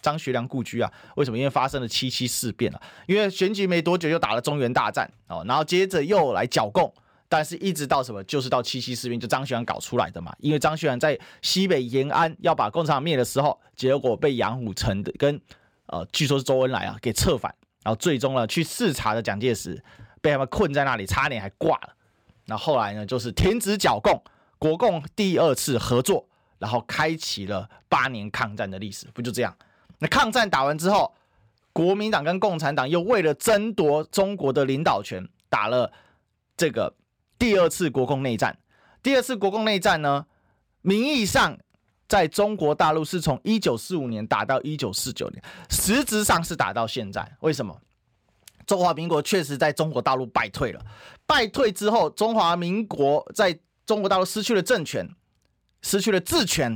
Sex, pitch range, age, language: male, 125-185 Hz, 30-49, Chinese